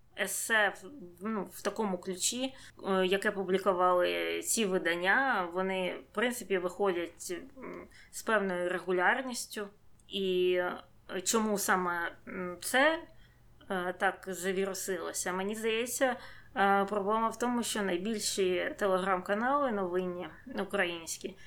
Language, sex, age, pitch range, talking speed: Ukrainian, female, 20-39, 185-225 Hz, 90 wpm